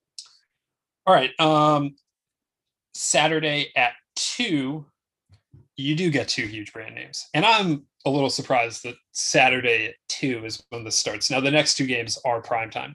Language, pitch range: English, 125-150 Hz